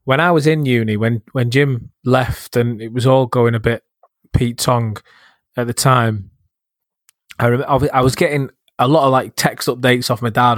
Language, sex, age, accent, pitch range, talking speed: English, male, 20-39, British, 115-130 Hz, 200 wpm